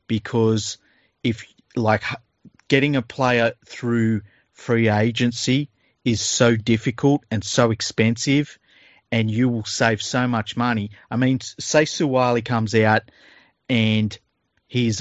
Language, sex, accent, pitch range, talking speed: English, male, Australian, 105-120 Hz, 120 wpm